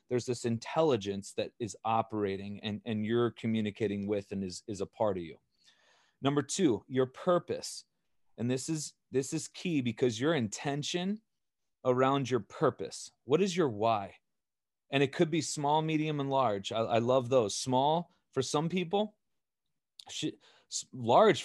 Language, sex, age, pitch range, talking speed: English, male, 30-49, 125-165 Hz, 155 wpm